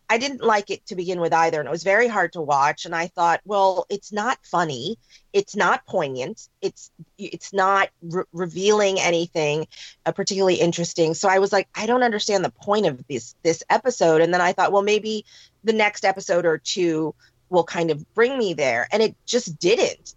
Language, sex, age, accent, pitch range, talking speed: English, female, 30-49, American, 170-215 Hz, 200 wpm